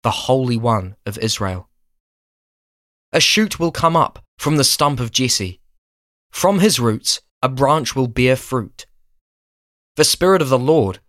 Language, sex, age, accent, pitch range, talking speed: English, male, 20-39, British, 95-140 Hz, 150 wpm